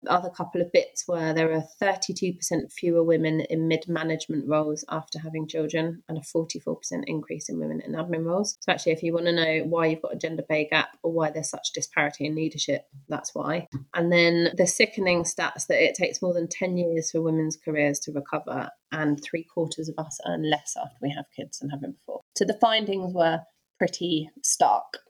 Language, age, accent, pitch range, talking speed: English, 20-39, British, 155-180 Hz, 210 wpm